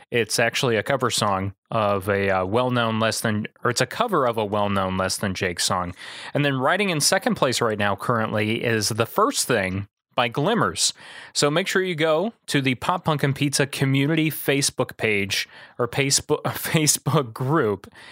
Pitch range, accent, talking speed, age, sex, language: 105-140 Hz, American, 180 wpm, 30-49, male, English